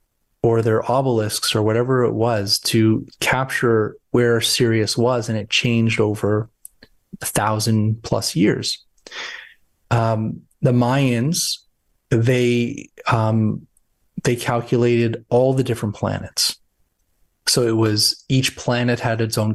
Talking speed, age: 120 wpm, 30-49